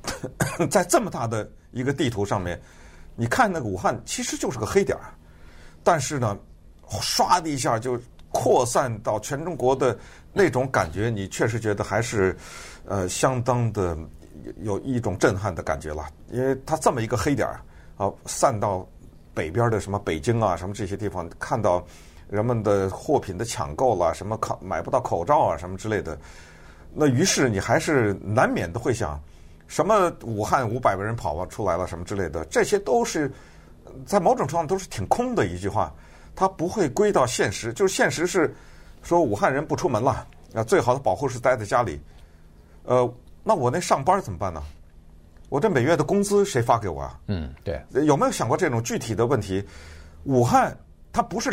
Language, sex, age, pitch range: Chinese, male, 50-69, 80-125 Hz